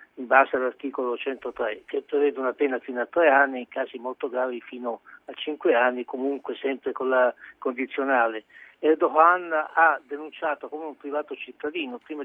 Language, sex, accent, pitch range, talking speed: Italian, male, native, 135-155 Hz, 160 wpm